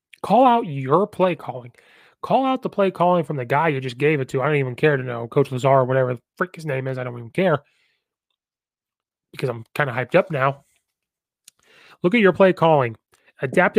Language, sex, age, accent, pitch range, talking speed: English, male, 30-49, American, 135-170 Hz, 220 wpm